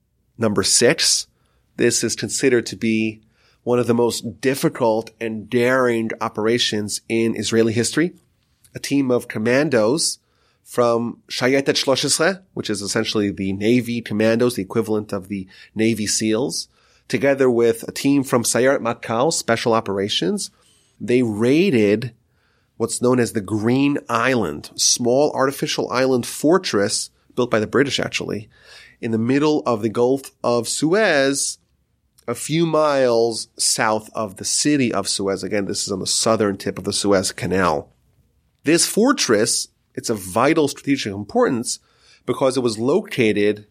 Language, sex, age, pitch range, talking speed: English, male, 30-49, 110-130 Hz, 140 wpm